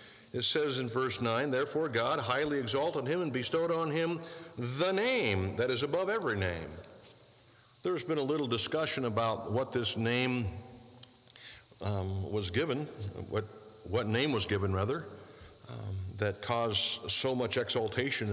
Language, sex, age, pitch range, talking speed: English, male, 50-69, 105-135 Hz, 145 wpm